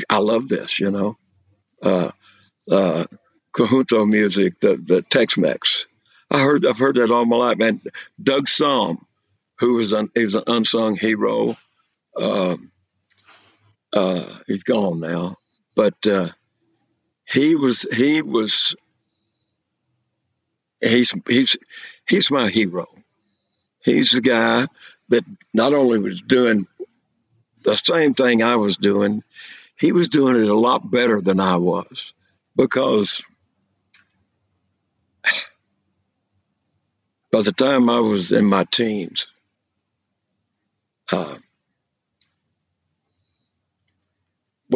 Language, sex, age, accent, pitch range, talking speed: English, male, 60-79, American, 100-125 Hz, 110 wpm